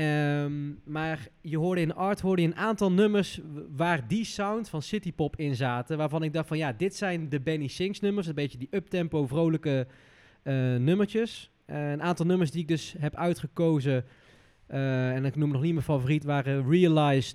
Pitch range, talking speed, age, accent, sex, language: 145-170 Hz, 190 wpm, 20-39, Dutch, male, Dutch